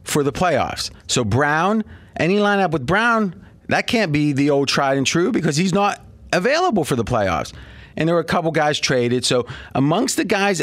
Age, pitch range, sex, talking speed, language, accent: 40-59, 145-205 Hz, male, 200 wpm, English, American